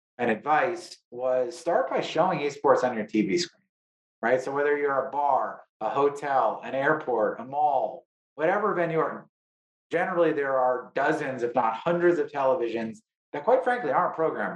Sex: male